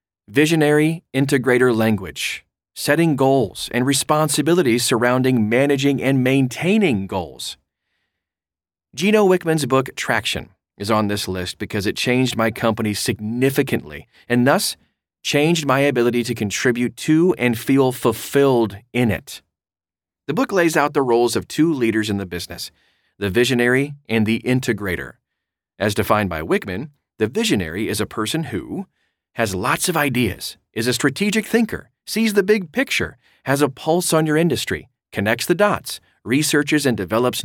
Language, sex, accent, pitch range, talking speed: English, male, American, 105-140 Hz, 145 wpm